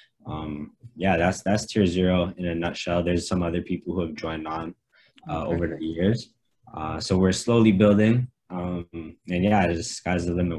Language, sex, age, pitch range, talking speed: English, male, 20-39, 85-95 Hz, 185 wpm